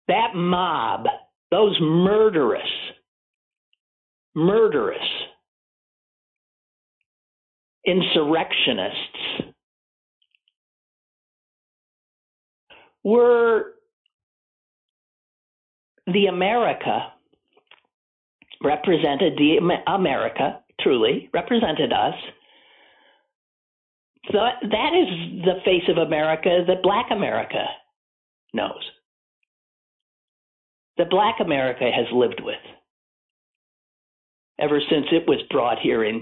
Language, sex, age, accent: English, male, 60-79, American